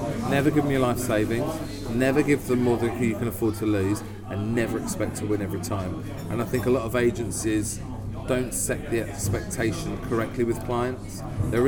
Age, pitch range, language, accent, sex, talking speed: 30-49, 105-130 Hz, English, British, male, 195 wpm